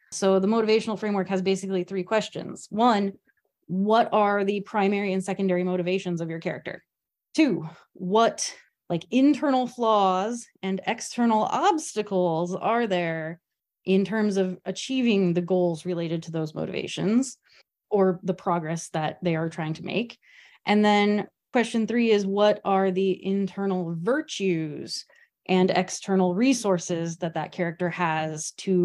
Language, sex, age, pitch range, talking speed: English, female, 20-39, 185-235 Hz, 135 wpm